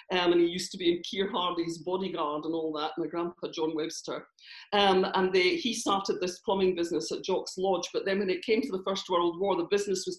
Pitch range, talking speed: 170-210 Hz, 235 wpm